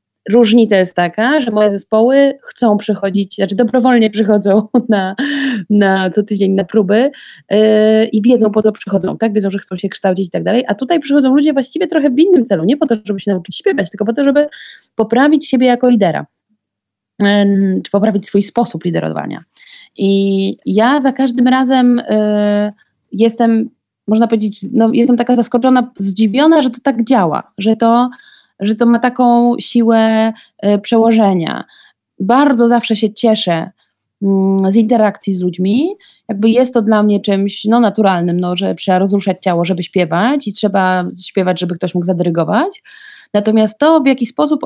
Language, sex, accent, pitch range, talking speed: Polish, female, native, 195-245 Hz, 165 wpm